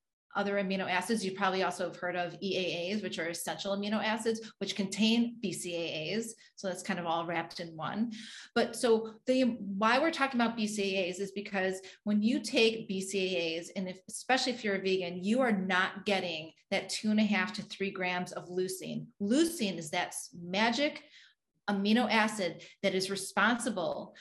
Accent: American